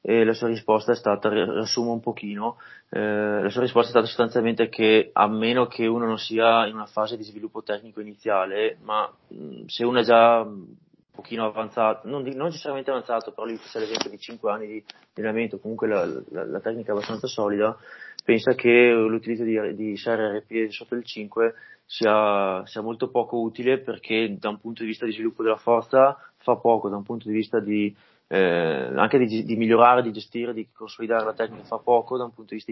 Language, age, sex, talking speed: Italian, 20-39, male, 200 wpm